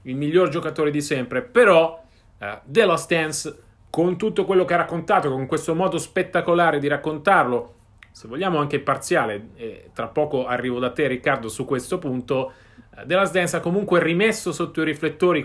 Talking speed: 165 wpm